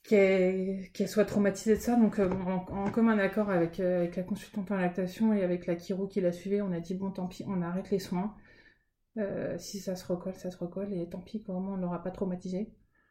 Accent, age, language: French, 20-39, French